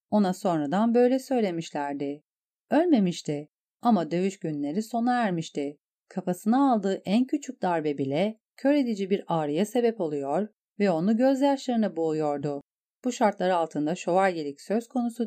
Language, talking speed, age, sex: Turkish, 125 wpm, 40-59, female